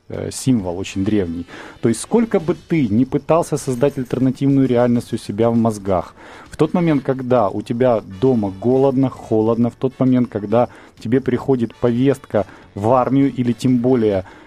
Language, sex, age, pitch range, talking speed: Russian, male, 30-49, 110-145 Hz, 160 wpm